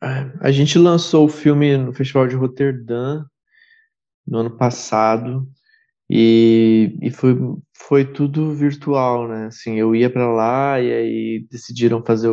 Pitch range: 115-140 Hz